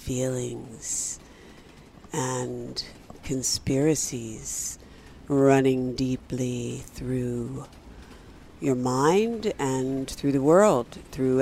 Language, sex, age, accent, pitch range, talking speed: English, female, 60-79, American, 125-160 Hz, 70 wpm